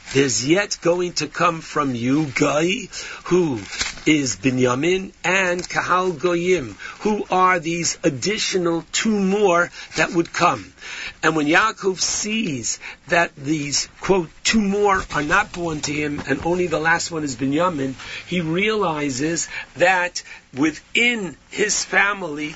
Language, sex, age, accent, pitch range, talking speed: English, male, 60-79, American, 145-190 Hz, 135 wpm